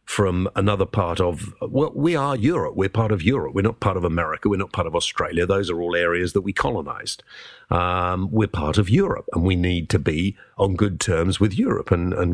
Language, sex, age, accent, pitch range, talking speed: English, male, 50-69, British, 95-120 Hz, 225 wpm